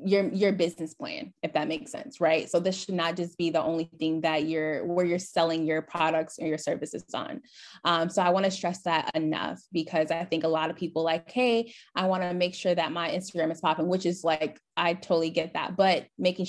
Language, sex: English, female